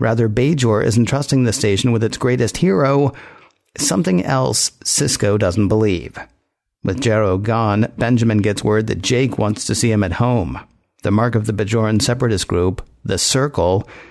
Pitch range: 105-125 Hz